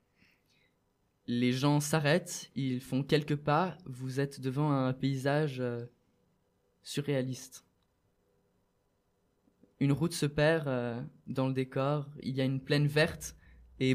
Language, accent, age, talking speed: French, French, 20-39, 125 wpm